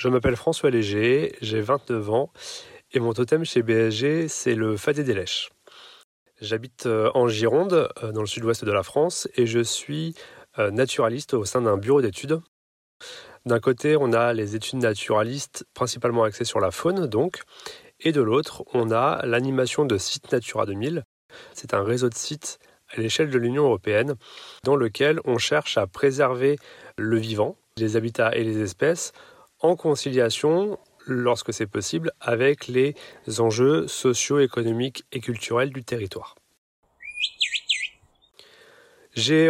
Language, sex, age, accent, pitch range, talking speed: French, male, 30-49, French, 110-140 Hz, 145 wpm